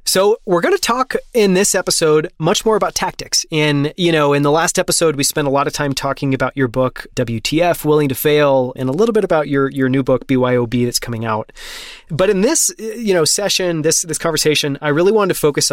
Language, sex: English, male